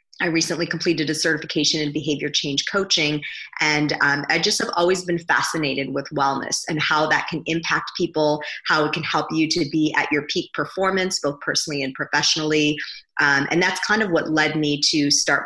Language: English